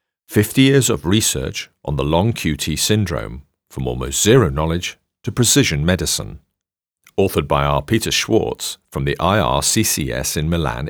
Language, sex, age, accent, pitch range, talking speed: English, male, 40-59, British, 75-105 Hz, 145 wpm